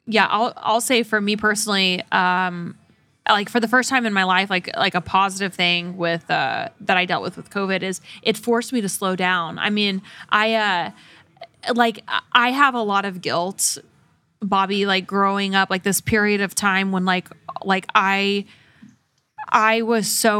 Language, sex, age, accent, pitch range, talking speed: English, female, 20-39, American, 190-220 Hz, 185 wpm